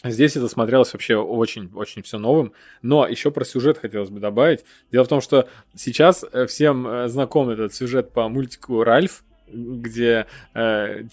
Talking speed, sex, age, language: 155 wpm, male, 20-39, Russian